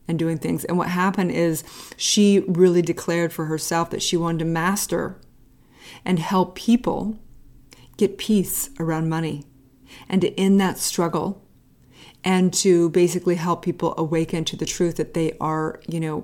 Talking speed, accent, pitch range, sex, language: 160 wpm, American, 165-190 Hz, female, English